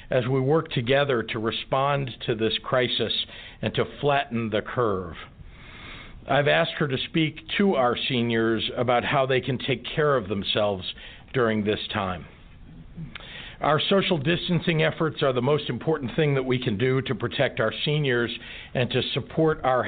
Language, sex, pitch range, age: English, male, 115-150 Hz, 50-69